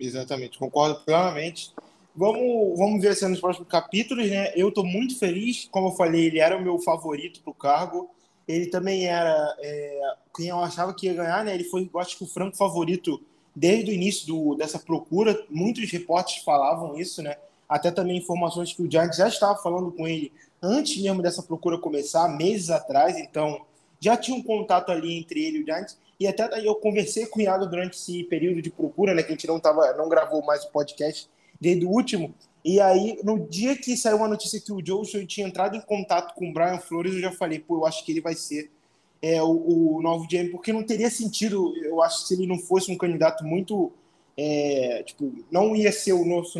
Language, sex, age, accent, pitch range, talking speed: Portuguese, male, 20-39, Brazilian, 165-205 Hz, 215 wpm